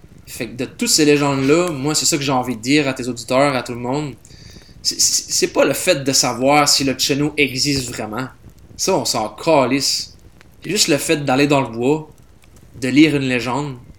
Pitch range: 120-145 Hz